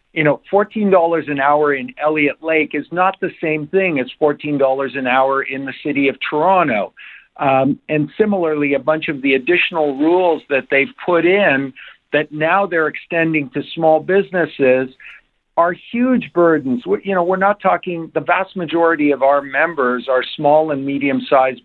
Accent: American